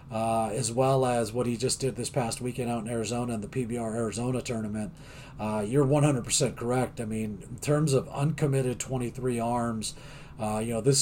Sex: male